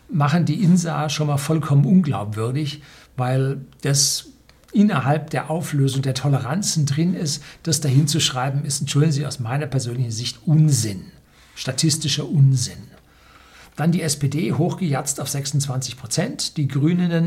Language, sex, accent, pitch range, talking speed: German, male, German, 135-165 Hz, 135 wpm